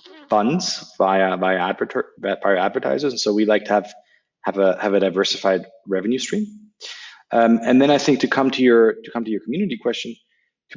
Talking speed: 190 wpm